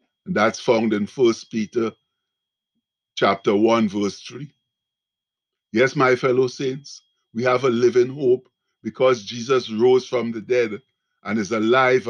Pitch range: 115-145 Hz